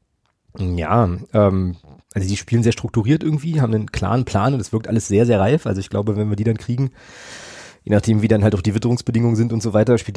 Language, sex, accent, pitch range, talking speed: German, male, German, 100-120 Hz, 235 wpm